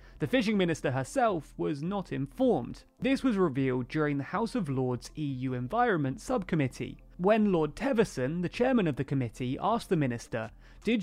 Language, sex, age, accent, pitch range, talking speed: English, male, 30-49, British, 135-215 Hz, 165 wpm